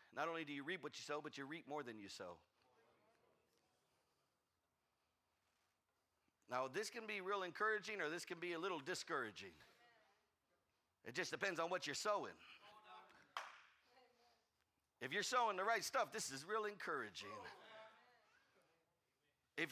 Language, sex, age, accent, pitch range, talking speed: English, male, 50-69, American, 170-230 Hz, 140 wpm